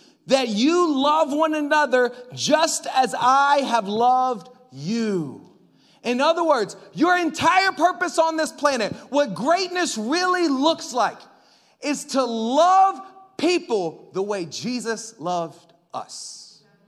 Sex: male